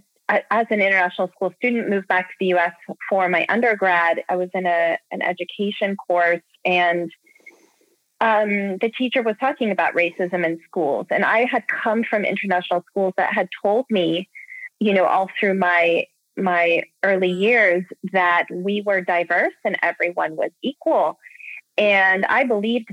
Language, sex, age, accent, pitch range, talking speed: English, female, 30-49, American, 180-220 Hz, 155 wpm